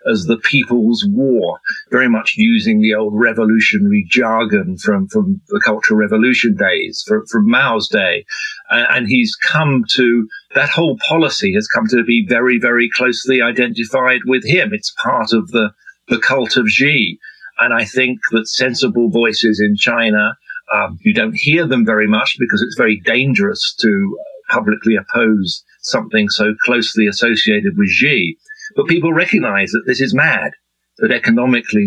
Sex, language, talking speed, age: male, English, 155 wpm, 50-69